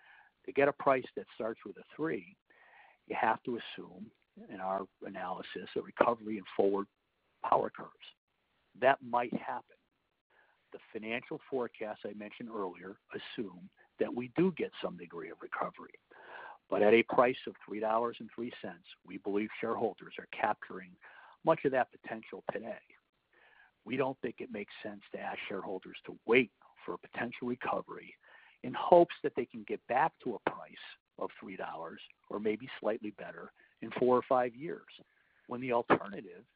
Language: English